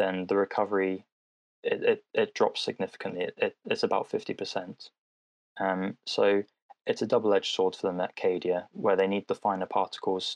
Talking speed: 160 wpm